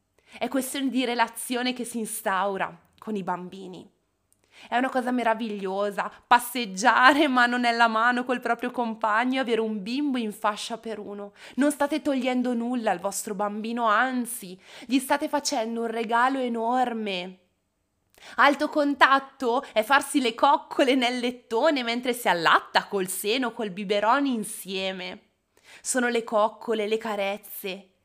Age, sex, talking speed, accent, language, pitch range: 20-39, female, 135 wpm, native, Italian, 205-255 Hz